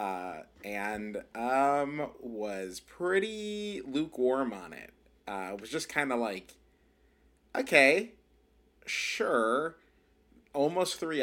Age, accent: 30-49, American